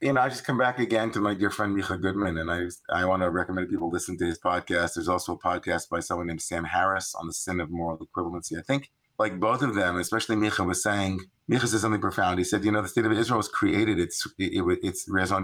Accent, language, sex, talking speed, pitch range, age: American, English, male, 265 wpm, 90-105 Hz, 30-49